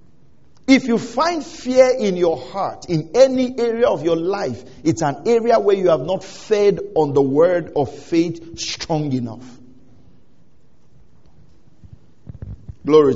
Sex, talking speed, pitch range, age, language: male, 130 wpm, 135-185 Hz, 50-69, English